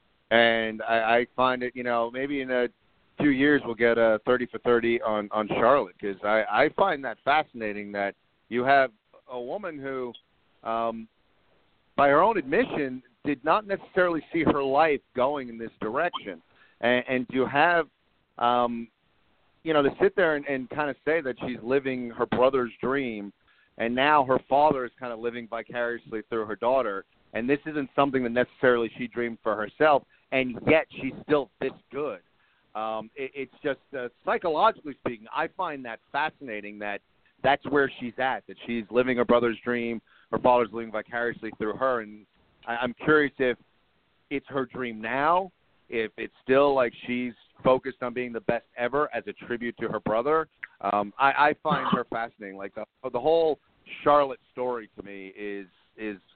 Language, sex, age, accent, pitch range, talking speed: English, male, 40-59, American, 110-135 Hz, 175 wpm